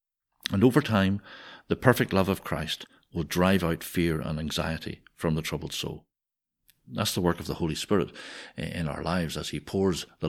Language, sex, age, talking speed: English, male, 60-79, 185 wpm